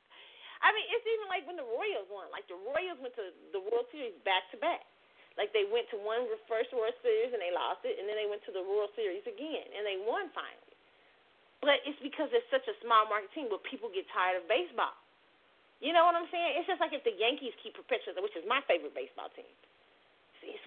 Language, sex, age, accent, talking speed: English, female, 30-49, American, 230 wpm